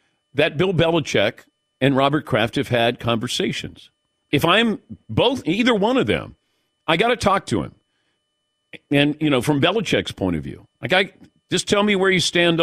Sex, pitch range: male, 115-150 Hz